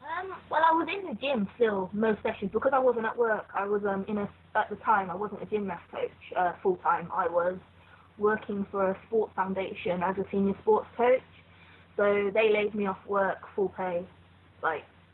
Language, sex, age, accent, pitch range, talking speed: English, female, 20-39, British, 190-230 Hz, 200 wpm